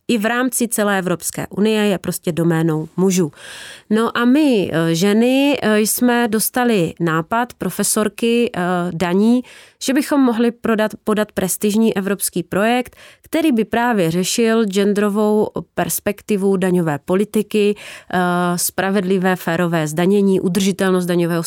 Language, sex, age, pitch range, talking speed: Czech, female, 30-49, 185-230 Hz, 110 wpm